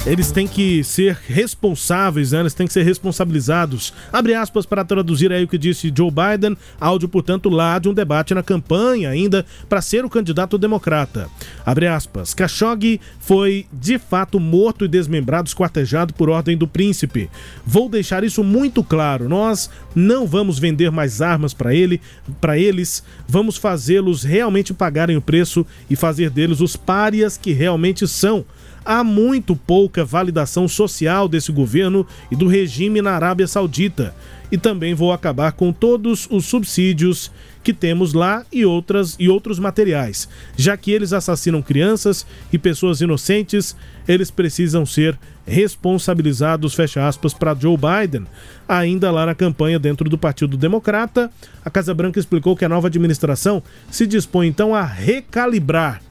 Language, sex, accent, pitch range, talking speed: Portuguese, male, Brazilian, 160-200 Hz, 155 wpm